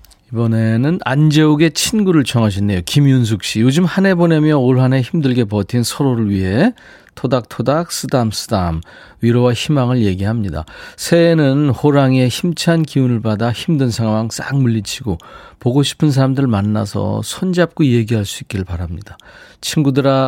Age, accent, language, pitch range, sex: 40-59, native, Korean, 105-155 Hz, male